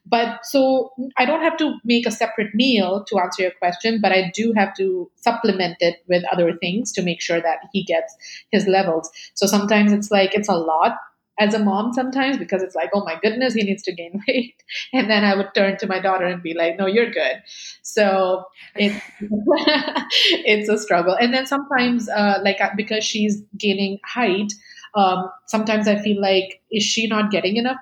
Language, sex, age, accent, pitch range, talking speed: English, female, 30-49, Indian, 190-235 Hz, 200 wpm